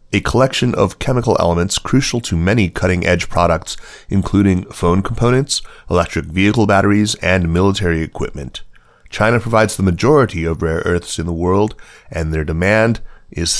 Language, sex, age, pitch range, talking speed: English, male, 30-49, 85-105 Hz, 145 wpm